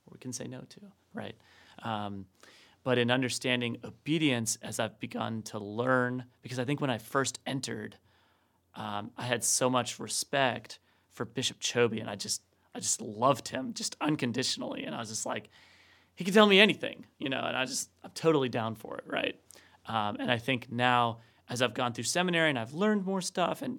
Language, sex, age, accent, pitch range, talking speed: English, male, 30-49, American, 115-140 Hz, 195 wpm